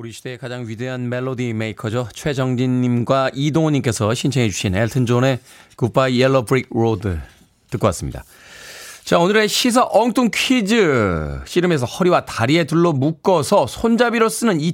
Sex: male